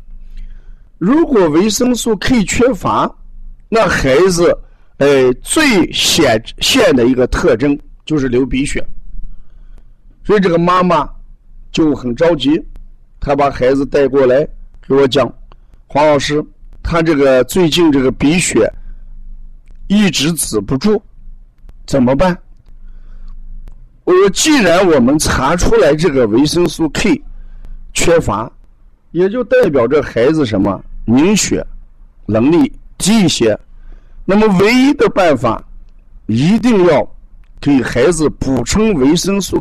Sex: male